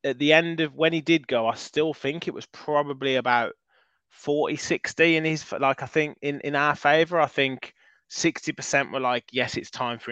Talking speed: 200 wpm